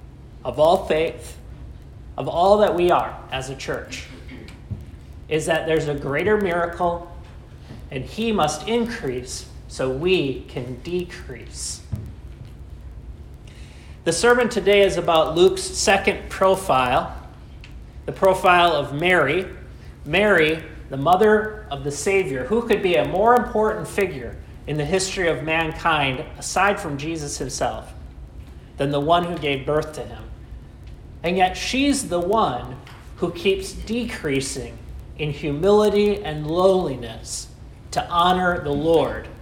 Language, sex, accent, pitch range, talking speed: English, male, American, 135-195 Hz, 125 wpm